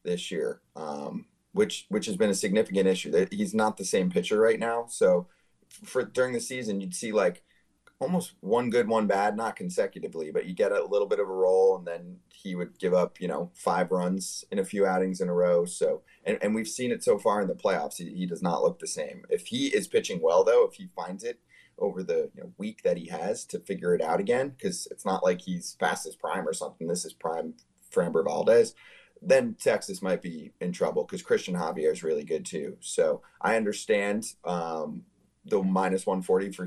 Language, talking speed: English, 225 wpm